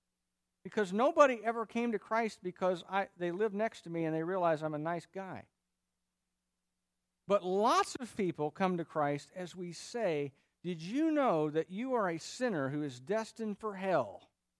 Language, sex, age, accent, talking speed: English, male, 50-69, American, 175 wpm